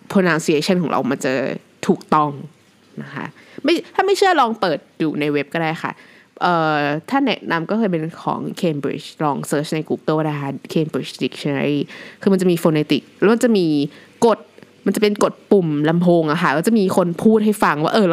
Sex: female